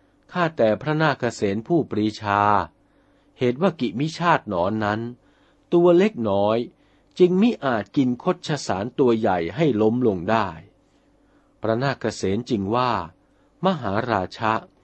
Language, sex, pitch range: Thai, male, 100-155 Hz